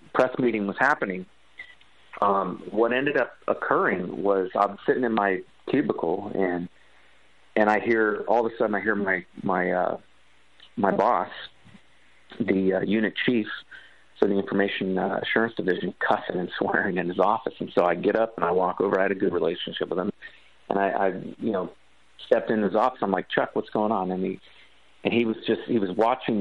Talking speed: 195 wpm